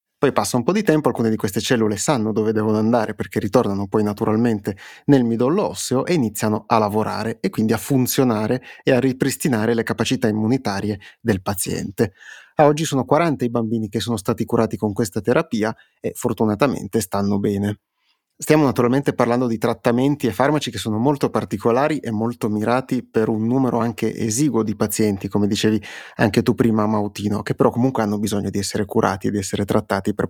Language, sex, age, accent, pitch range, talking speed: Italian, male, 30-49, native, 110-125 Hz, 185 wpm